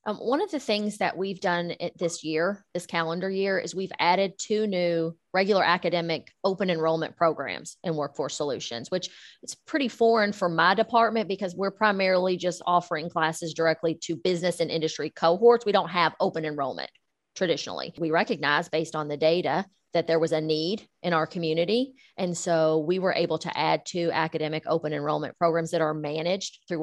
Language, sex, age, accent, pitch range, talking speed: English, female, 30-49, American, 160-195 Hz, 180 wpm